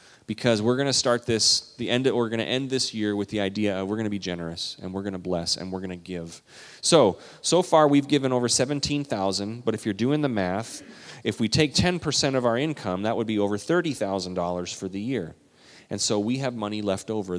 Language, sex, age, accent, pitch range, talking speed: English, male, 30-49, American, 95-120 Hz, 240 wpm